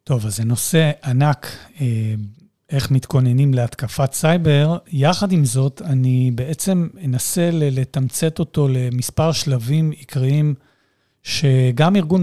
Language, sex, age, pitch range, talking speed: Hebrew, male, 40-59, 130-160 Hz, 110 wpm